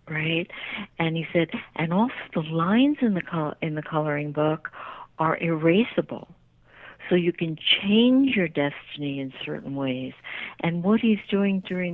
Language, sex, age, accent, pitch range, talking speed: English, female, 60-79, American, 155-190 Hz, 155 wpm